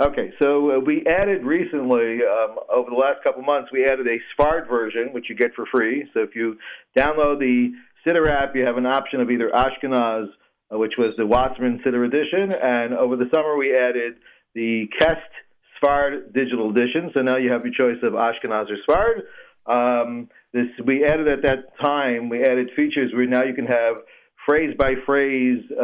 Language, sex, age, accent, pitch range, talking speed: English, male, 40-59, American, 120-145 Hz, 180 wpm